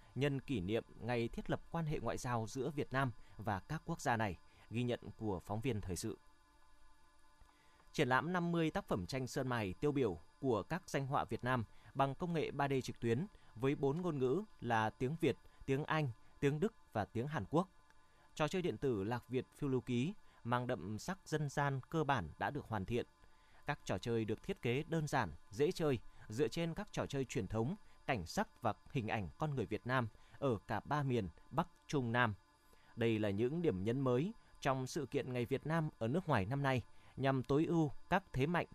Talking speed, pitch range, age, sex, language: 215 wpm, 115-145 Hz, 20-39, male, Vietnamese